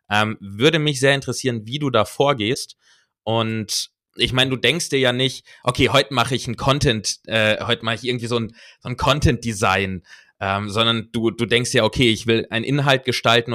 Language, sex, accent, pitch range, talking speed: German, male, German, 115-150 Hz, 195 wpm